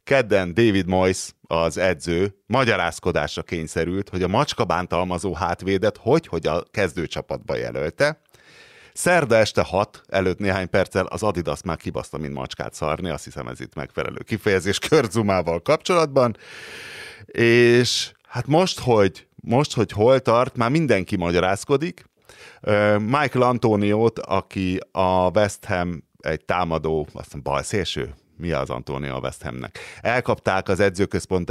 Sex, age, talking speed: male, 30-49, 120 wpm